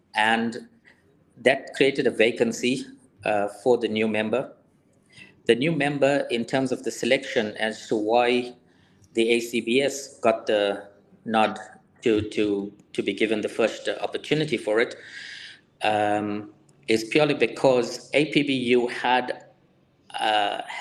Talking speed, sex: 125 wpm, male